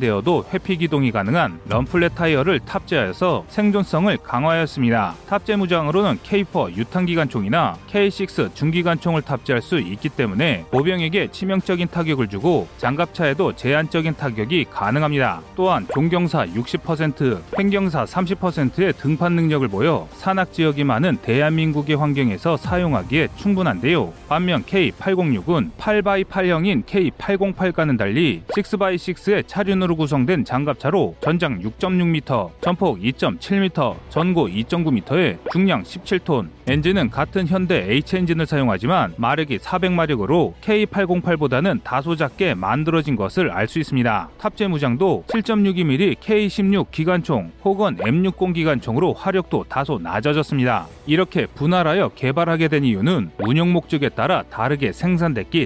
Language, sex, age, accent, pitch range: Korean, male, 30-49, native, 140-185 Hz